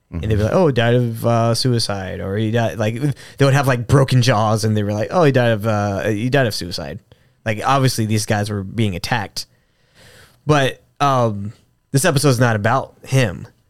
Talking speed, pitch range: 205 wpm, 110-135 Hz